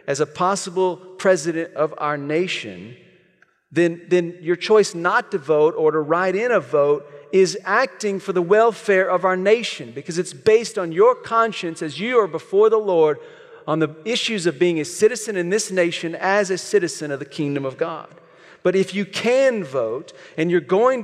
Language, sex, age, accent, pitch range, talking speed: English, male, 40-59, American, 150-215 Hz, 190 wpm